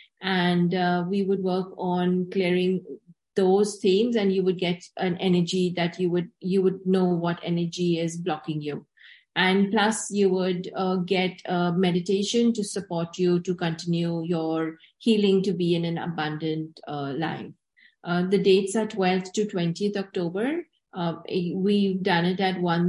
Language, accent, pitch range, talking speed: English, Indian, 175-195 Hz, 160 wpm